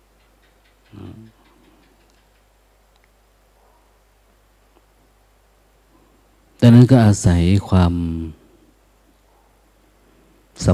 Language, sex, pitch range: Thai, male, 90-110 Hz